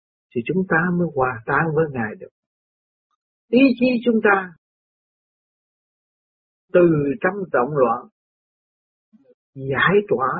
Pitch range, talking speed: 135-220 Hz, 110 wpm